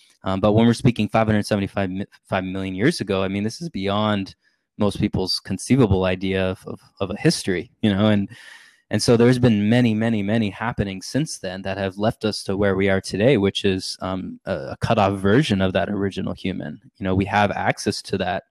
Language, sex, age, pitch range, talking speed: English, male, 20-39, 95-105 Hz, 220 wpm